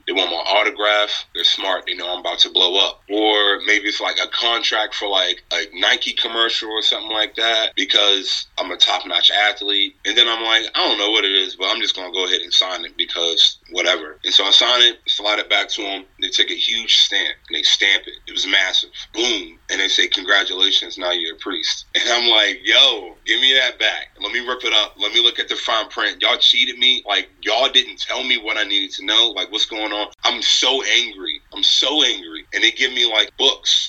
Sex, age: male, 30-49